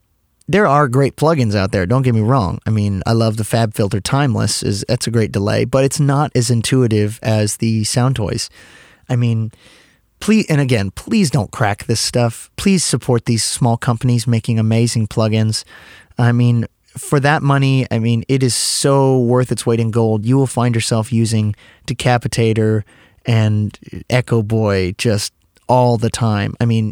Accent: American